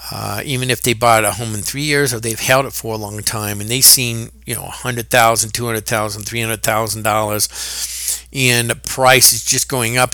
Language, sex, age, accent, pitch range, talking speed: English, male, 50-69, American, 110-140 Hz, 230 wpm